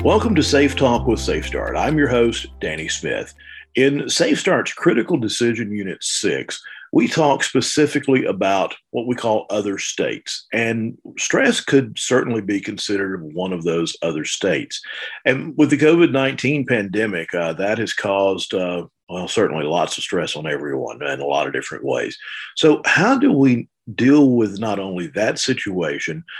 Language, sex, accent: English, male, American